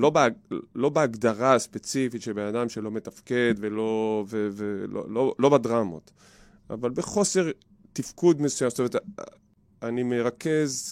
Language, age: Hebrew, 20-39